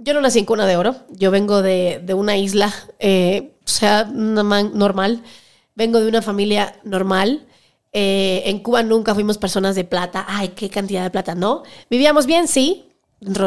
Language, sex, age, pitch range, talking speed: Spanish, female, 30-49, 205-260 Hz, 180 wpm